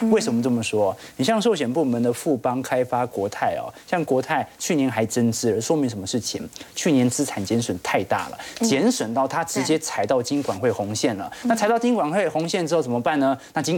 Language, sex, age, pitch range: Chinese, male, 30-49, 115-155 Hz